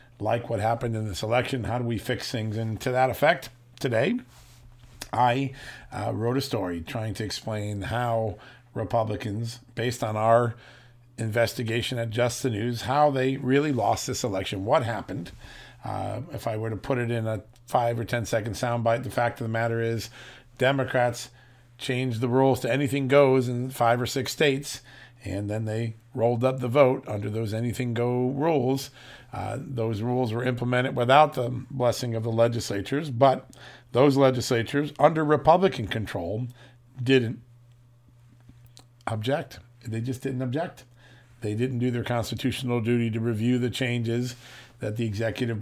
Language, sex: English, male